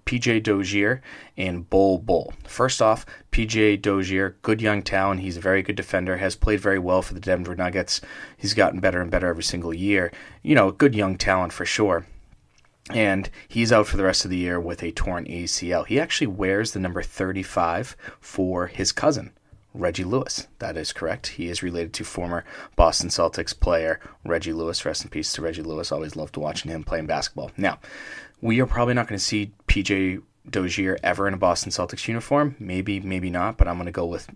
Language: English